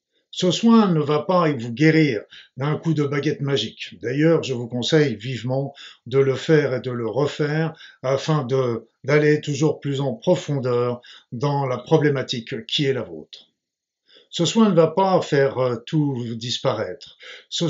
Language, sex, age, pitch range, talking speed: French, male, 50-69, 130-150 Hz, 155 wpm